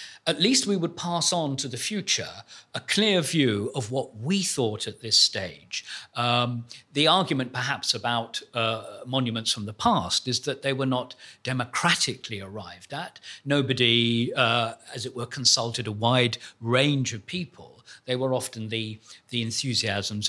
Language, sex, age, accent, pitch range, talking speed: English, male, 50-69, British, 110-145 Hz, 160 wpm